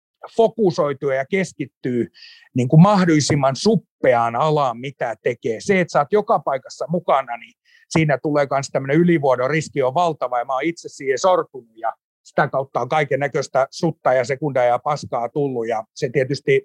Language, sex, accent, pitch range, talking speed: Finnish, male, native, 135-170 Hz, 165 wpm